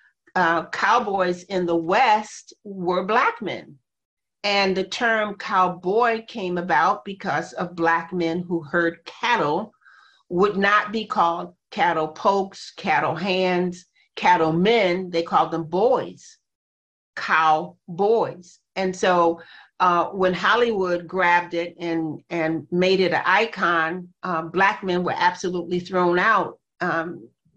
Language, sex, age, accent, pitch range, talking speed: English, female, 40-59, American, 170-200 Hz, 125 wpm